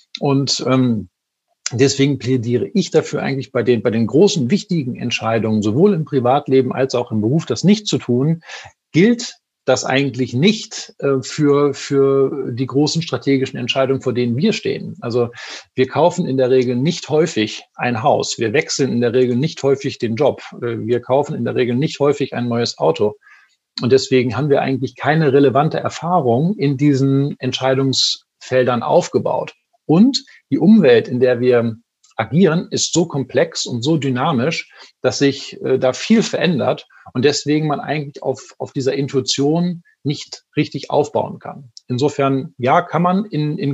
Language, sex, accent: German, male, German